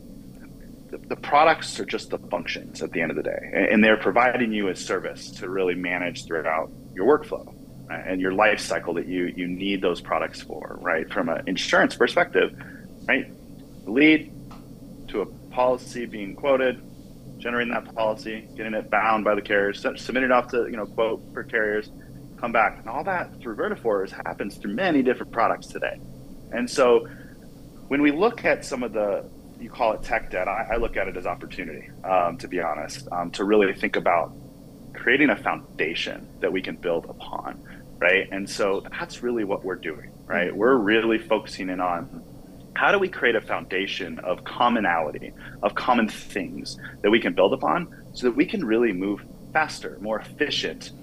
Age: 30-49